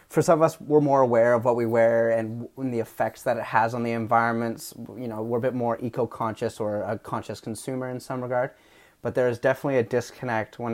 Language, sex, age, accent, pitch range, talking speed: English, male, 30-49, American, 115-150 Hz, 230 wpm